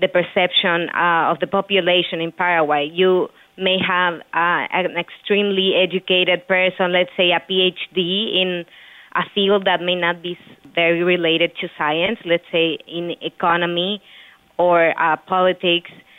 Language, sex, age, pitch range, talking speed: English, female, 20-39, 170-190 Hz, 140 wpm